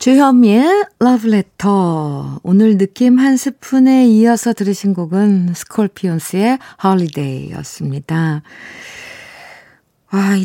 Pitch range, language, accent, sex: 170-250 Hz, Korean, native, female